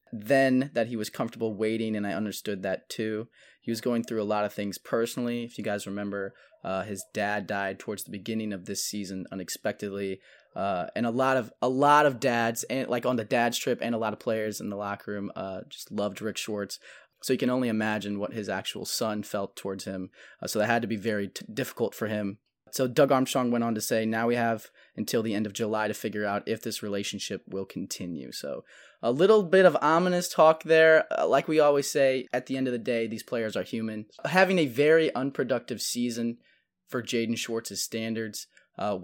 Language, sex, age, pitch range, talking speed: English, male, 20-39, 100-120 Hz, 220 wpm